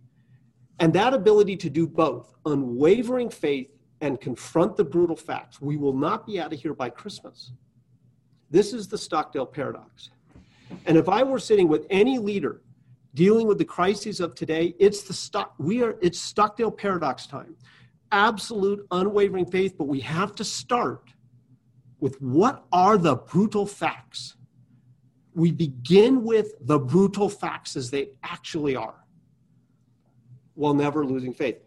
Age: 50-69